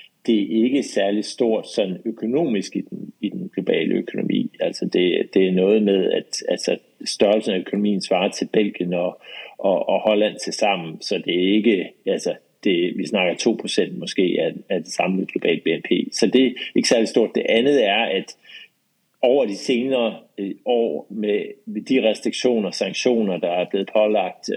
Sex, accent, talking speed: male, native, 180 wpm